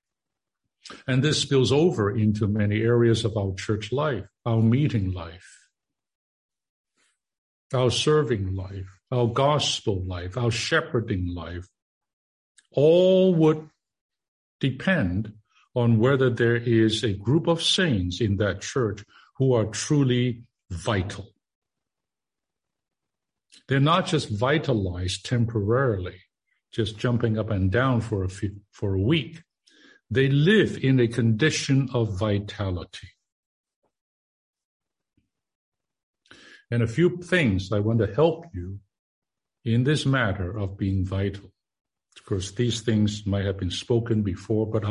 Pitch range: 100-130 Hz